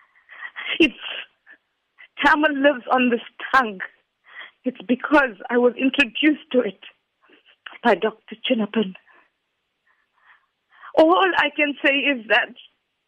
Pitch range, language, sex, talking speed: 255-335 Hz, English, female, 95 wpm